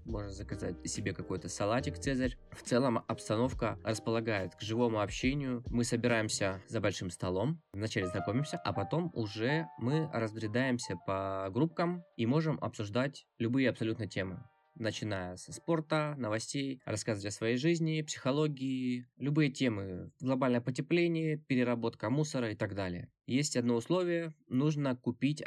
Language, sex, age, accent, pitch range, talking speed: Russian, male, 20-39, native, 105-135 Hz, 130 wpm